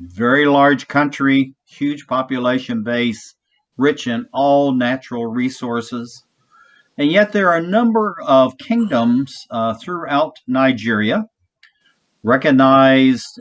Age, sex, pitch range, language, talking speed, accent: 50-69, male, 120-190 Hz, English, 105 wpm, American